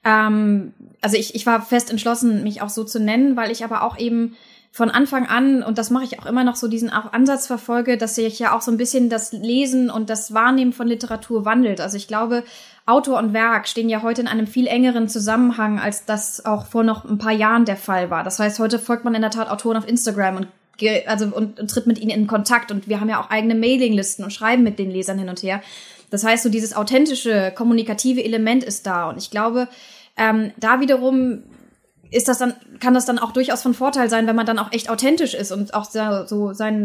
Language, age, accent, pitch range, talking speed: German, 20-39, German, 215-245 Hz, 230 wpm